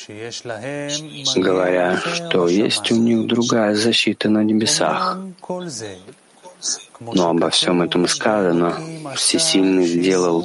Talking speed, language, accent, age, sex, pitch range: 90 wpm, Russian, native, 40-59, male, 95-135 Hz